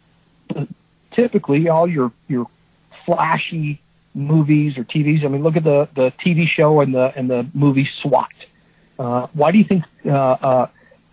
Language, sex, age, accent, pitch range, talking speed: English, male, 50-69, American, 140-180 Hz, 155 wpm